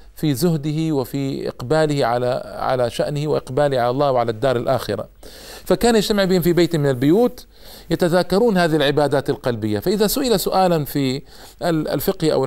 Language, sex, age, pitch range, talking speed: Arabic, male, 50-69, 120-160 Hz, 145 wpm